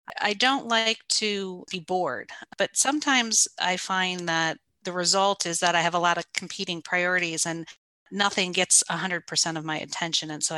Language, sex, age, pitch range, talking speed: English, female, 40-59, 170-195 Hz, 175 wpm